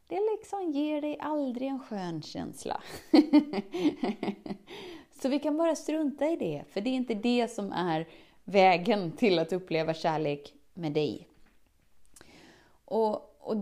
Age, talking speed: 20-39, 135 wpm